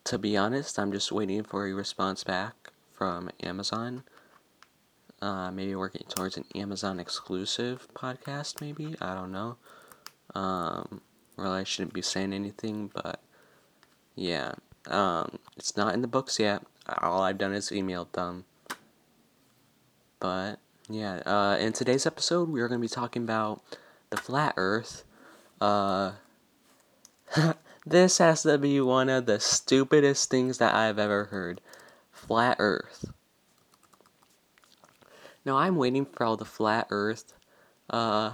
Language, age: English, 20-39